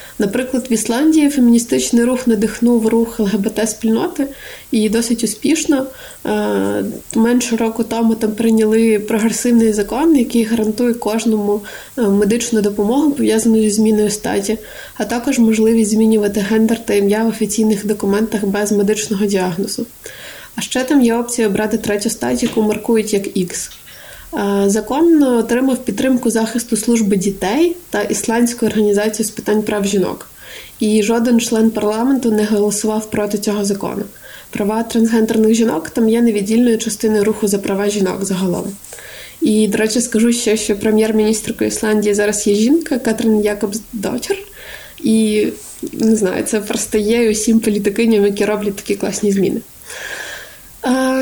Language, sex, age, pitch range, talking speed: Ukrainian, female, 20-39, 210-235 Hz, 135 wpm